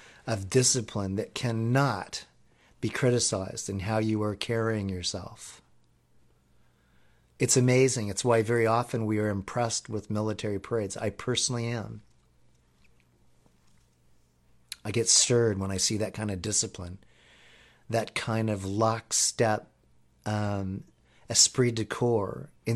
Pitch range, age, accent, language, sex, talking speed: 95-115 Hz, 40-59, American, English, male, 120 wpm